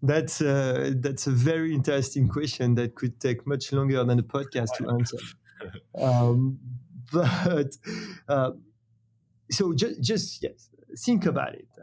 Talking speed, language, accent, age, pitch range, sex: 130 wpm, English, French, 30-49, 120-140 Hz, male